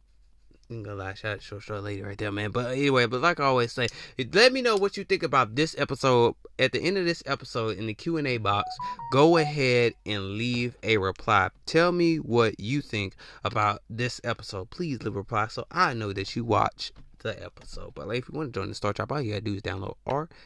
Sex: male